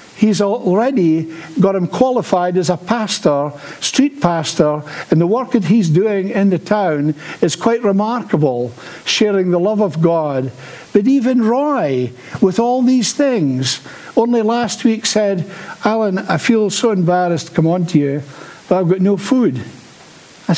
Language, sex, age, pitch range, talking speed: English, male, 60-79, 150-205 Hz, 155 wpm